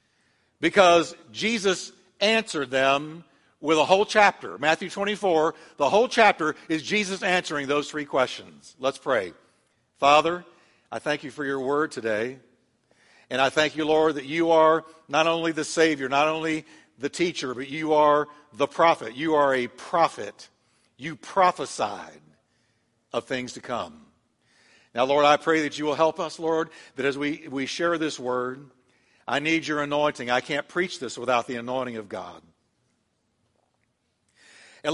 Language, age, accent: English, 60-79, American